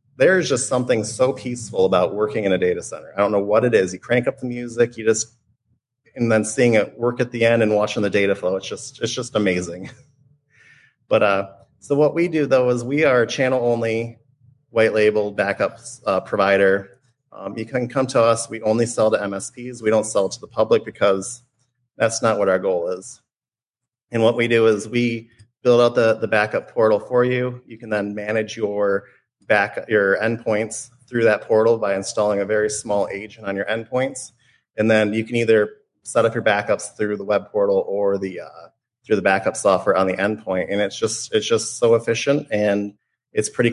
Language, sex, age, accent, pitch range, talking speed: English, male, 30-49, American, 105-120 Hz, 205 wpm